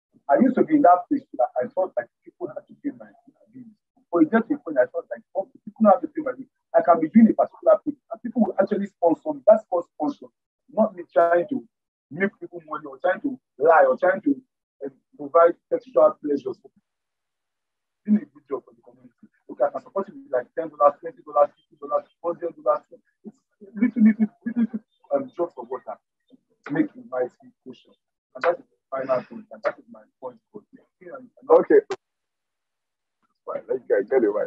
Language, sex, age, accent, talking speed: English, male, 50-69, Nigerian, 185 wpm